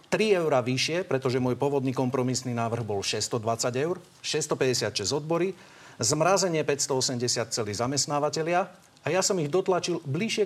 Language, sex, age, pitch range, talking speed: Slovak, male, 50-69, 125-185 Hz, 130 wpm